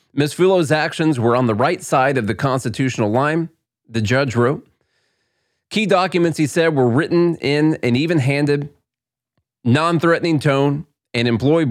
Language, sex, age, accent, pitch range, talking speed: English, male, 30-49, American, 110-145 Hz, 145 wpm